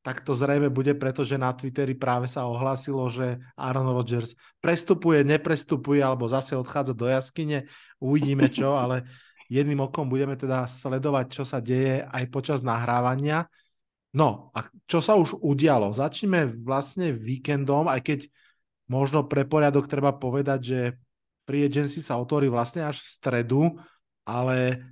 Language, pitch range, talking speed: Slovak, 125-145 Hz, 145 wpm